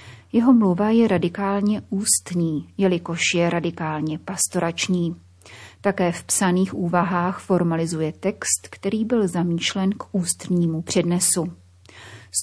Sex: female